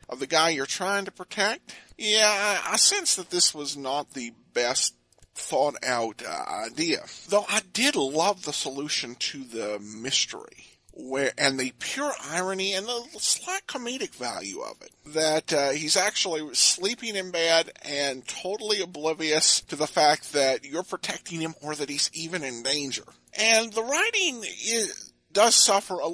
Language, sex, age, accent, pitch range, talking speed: English, male, 50-69, American, 140-215 Hz, 165 wpm